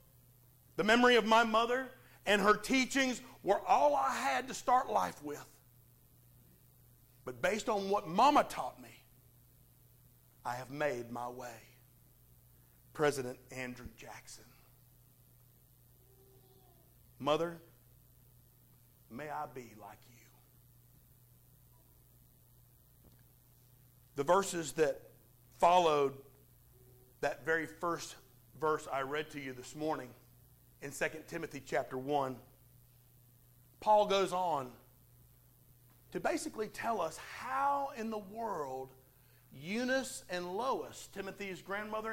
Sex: male